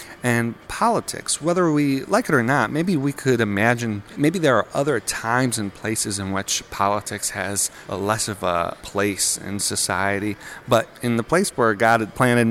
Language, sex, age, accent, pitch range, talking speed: English, male, 40-59, American, 105-130 Hz, 175 wpm